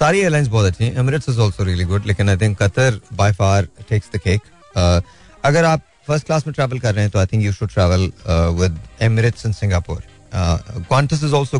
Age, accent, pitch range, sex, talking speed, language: 30-49, native, 95-115 Hz, male, 210 wpm, Hindi